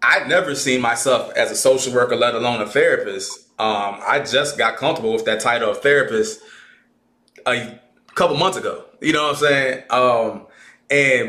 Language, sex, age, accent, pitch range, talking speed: English, male, 20-39, American, 130-175 Hz, 175 wpm